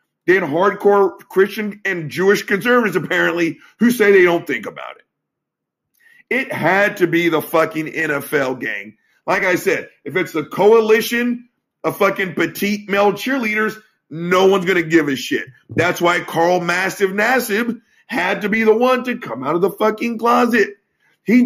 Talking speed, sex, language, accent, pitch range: 165 wpm, male, English, American, 185-240 Hz